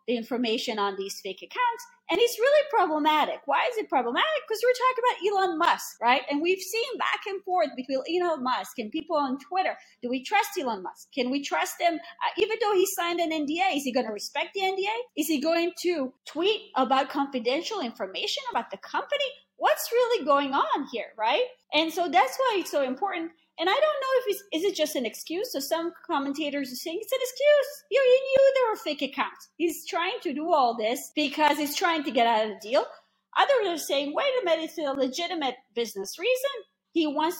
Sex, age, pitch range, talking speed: female, 30-49, 275-400 Hz, 215 wpm